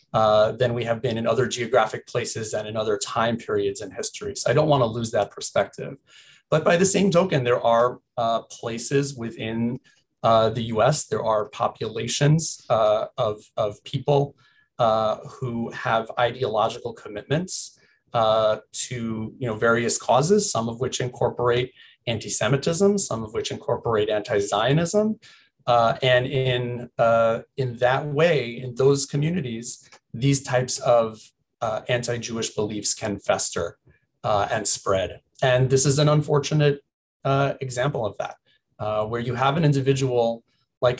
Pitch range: 115-140 Hz